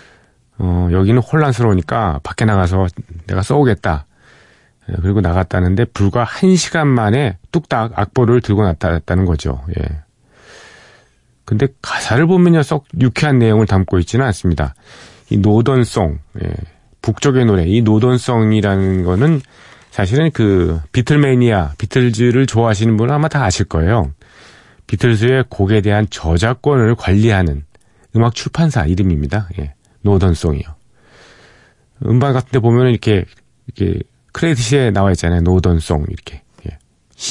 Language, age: Korean, 40-59